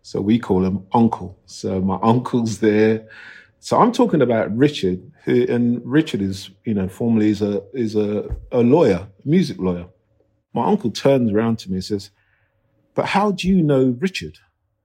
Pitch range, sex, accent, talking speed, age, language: 105-155 Hz, male, British, 175 wpm, 50-69, English